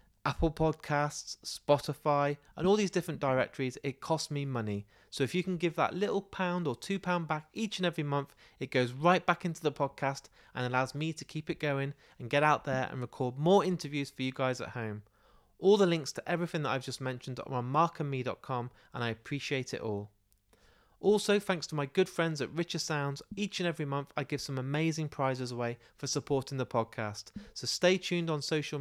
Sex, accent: male, British